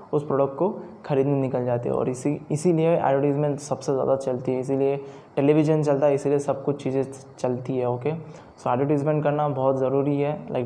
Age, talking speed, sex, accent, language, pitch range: 20-39, 195 wpm, male, native, Hindi, 130-145 Hz